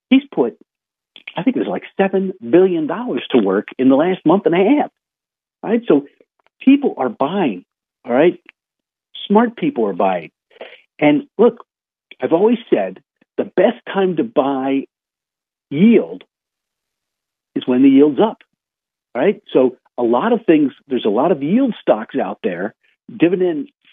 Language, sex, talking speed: English, male, 150 wpm